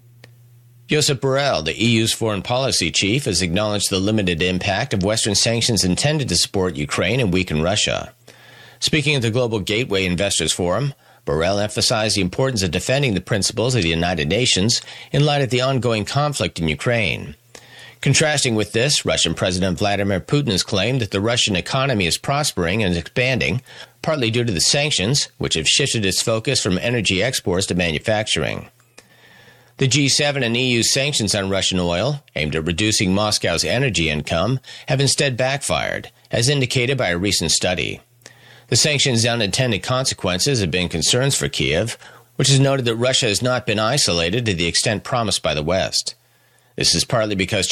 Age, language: 40-59, English